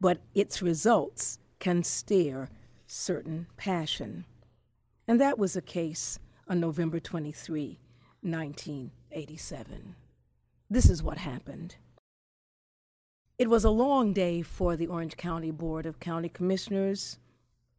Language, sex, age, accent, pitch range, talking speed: English, female, 50-69, American, 155-190 Hz, 110 wpm